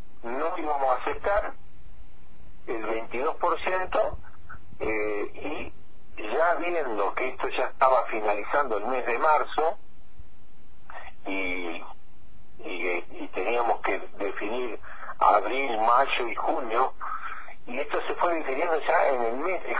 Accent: Argentinian